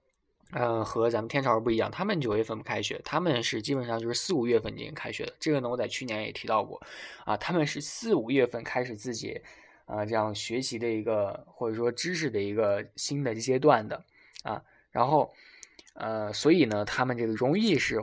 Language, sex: Chinese, male